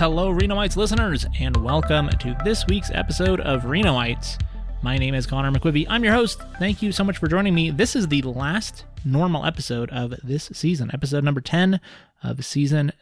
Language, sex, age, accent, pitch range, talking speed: English, male, 30-49, American, 125-155 Hz, 185 wpm